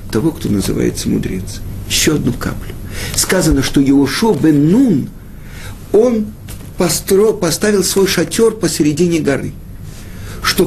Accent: native